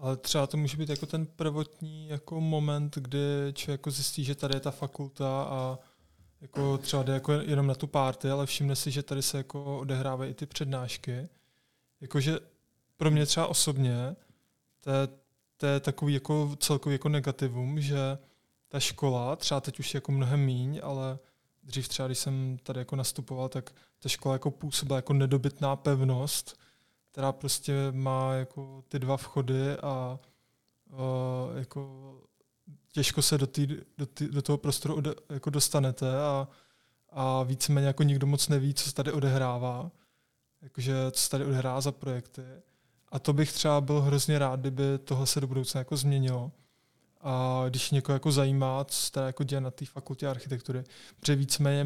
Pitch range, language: 130-145 Hz, Czech